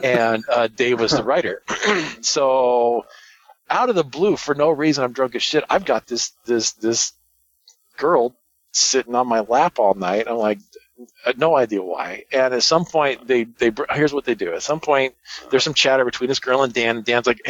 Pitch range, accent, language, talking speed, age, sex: 105-150 Hz, American, English, 200 wpm, 40-59, male